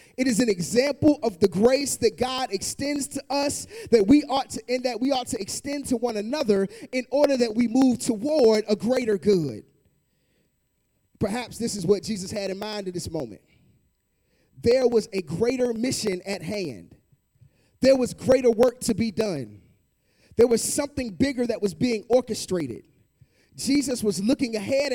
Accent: American